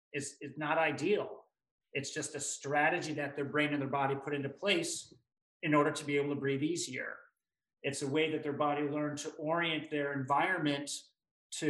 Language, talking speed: English, 190 wpm